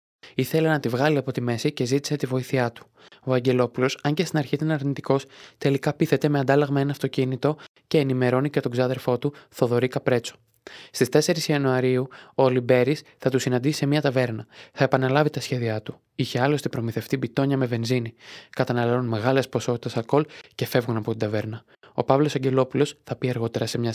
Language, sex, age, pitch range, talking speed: Greek, male, 20-39, 120-140 Hz, 185 wpm